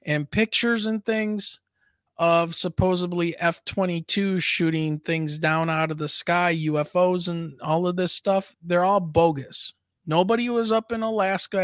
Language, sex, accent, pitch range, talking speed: English, male, American, 155-200 Hz, 145 wpm